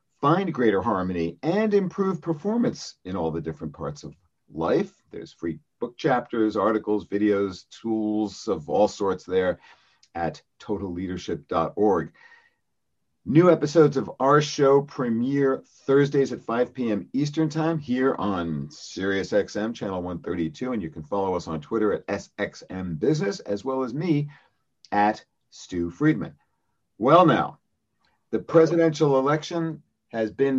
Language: English